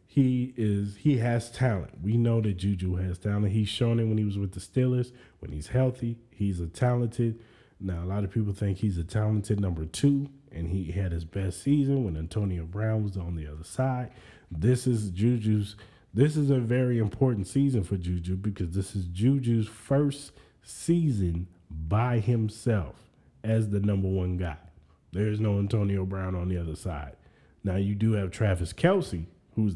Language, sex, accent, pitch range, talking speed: English, male, American, 90-115 Hz, 180 wpm